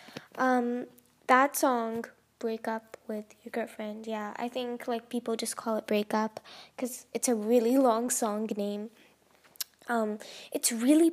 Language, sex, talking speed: English, female, 150 wpm